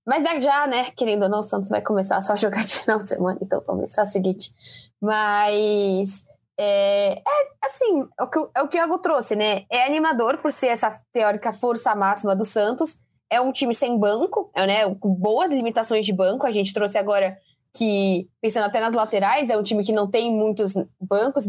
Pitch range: 205-270 Hz